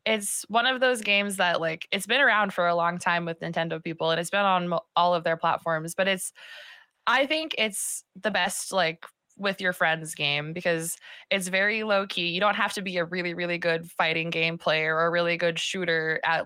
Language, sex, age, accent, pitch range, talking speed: English, female, 20-39, American, 170-205 Hz, 220 wpm